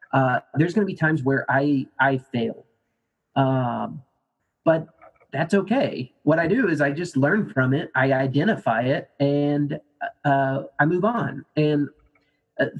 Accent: American